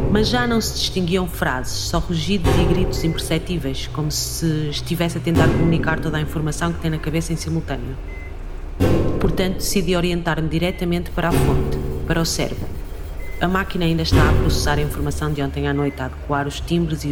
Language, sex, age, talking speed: Portuguese, female, 30-49, 185 wpm